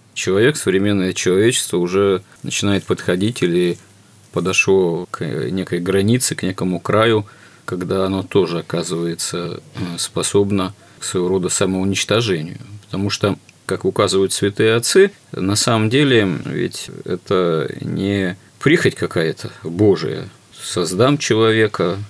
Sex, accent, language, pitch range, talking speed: male, native, Russian, 90-110 Hz, 110 wpm